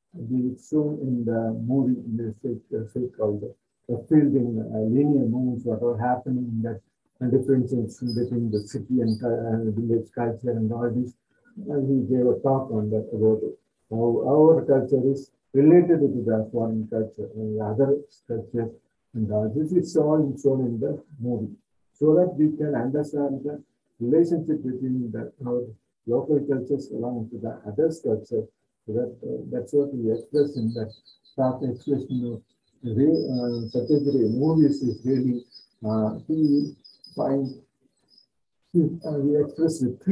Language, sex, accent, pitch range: Tamil, male, native, 115-140 Hz